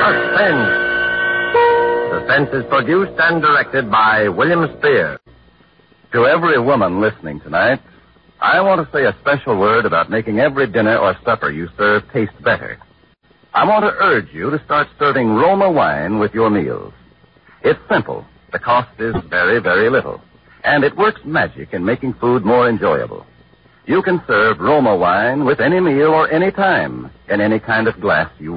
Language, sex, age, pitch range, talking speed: English, male, 60-79, 110-175 Hz, 165 wpm